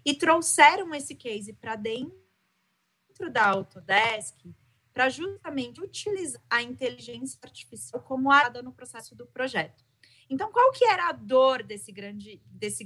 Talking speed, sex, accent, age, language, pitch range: 130 wpm, female, Brazilian, 30-49, Portuguese, 200-270 Hz